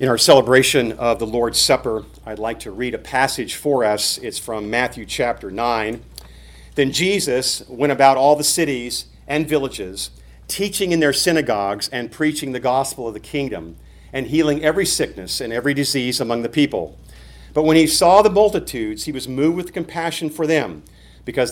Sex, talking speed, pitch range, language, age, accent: male, 180 wpm, 115-155 Hz, English, 50-69, American